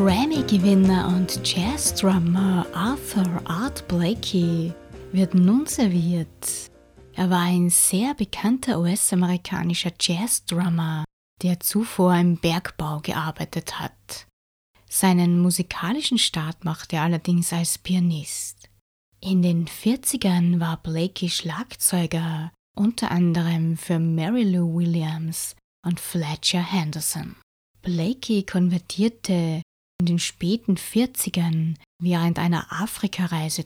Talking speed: 100 wpm